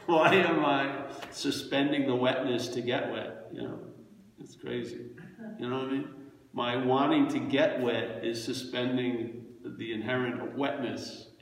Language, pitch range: English, 120-145 Hz